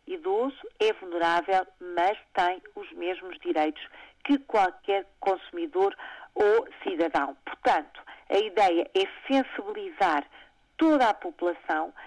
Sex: female